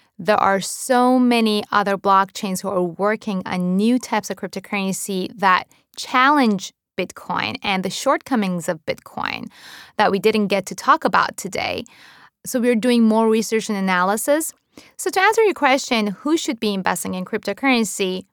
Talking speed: 155 wpm